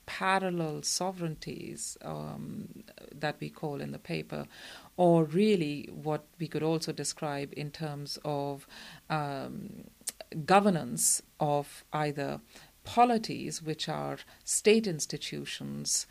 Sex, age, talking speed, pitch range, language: female, 40-59, 105 wpm, 145-185 Hz, English